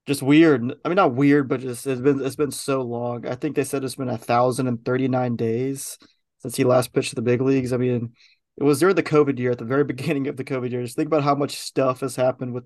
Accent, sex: American, male